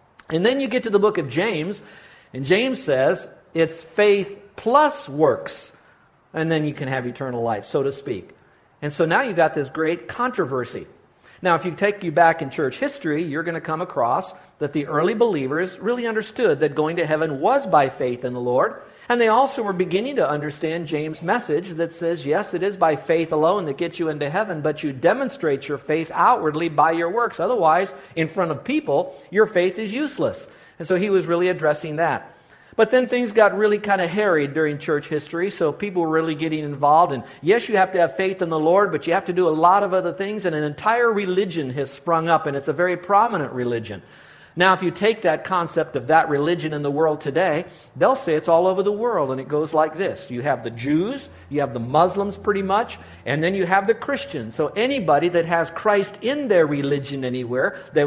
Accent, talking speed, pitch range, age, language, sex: American, 220 wpm, 150-195 Hz, 50-69, English, male